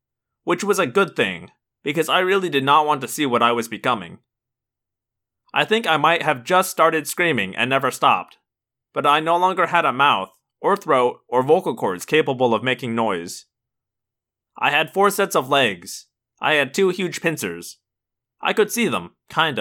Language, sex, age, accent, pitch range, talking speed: English, male, 20-39, American, 120-165 Hz, 185 wpm